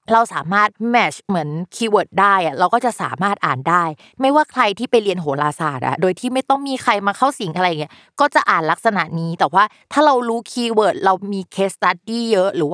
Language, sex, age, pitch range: Thai, female, 20-39, 160-215 Hz